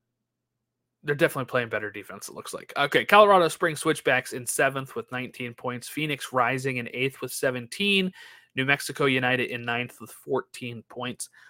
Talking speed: 160 wpm